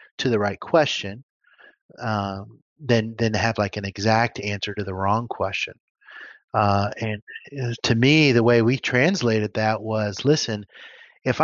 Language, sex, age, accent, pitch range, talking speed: English, male, 30-49, American, 110-130 Hz, 150 wpm